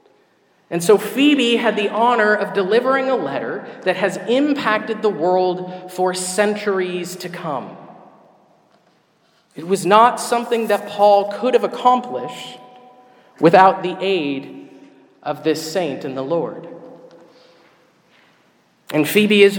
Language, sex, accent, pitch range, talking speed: English, male, American, 195-230 Hz, 125 wpm